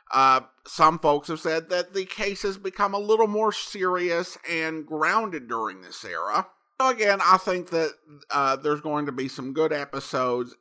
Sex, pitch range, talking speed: male, 135-210 Hz, 175 wpm